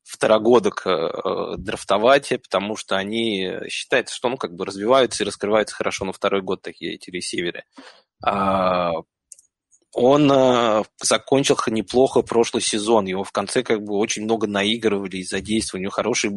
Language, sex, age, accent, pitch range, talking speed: Russian, male, 20-39, native, 100-120 Hz, 150 wpm